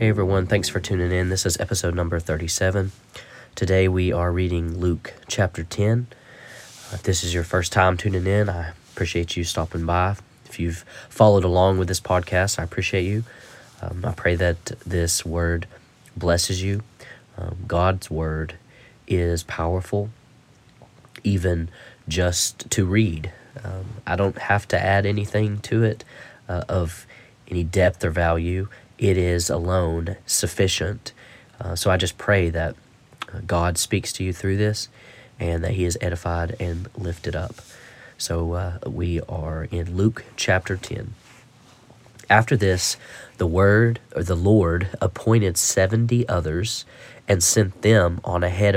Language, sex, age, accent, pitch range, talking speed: English, male, 30-49, American, 85-110 Hz, 150 wpm